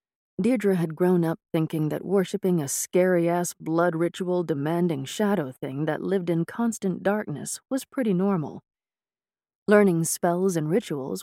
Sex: female